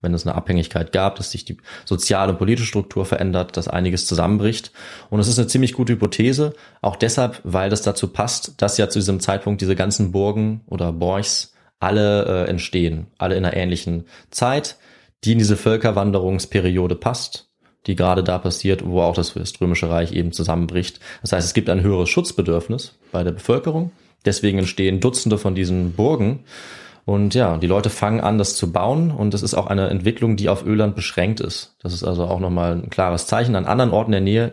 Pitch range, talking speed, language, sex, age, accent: 90-110 Hz, 195 wpm, German, male, 20-39, German